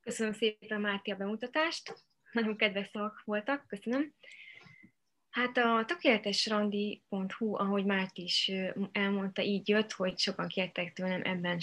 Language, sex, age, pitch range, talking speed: Hungarian, female, 20-39, 190-225 Hz, 120 wpm